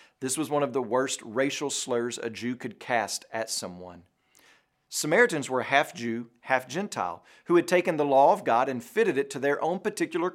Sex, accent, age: male, American, 40-59